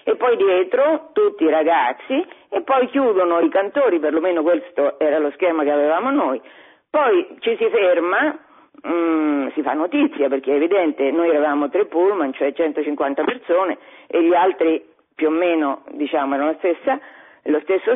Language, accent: Italian, native